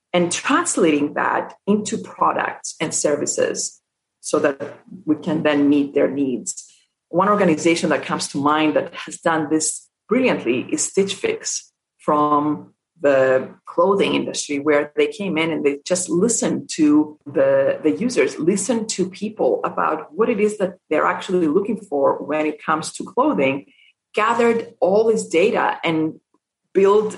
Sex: female